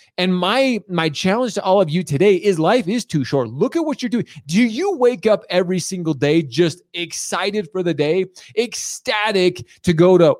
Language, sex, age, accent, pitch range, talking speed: English, male, 30-49, American, 160-220 Hz, 200 wpm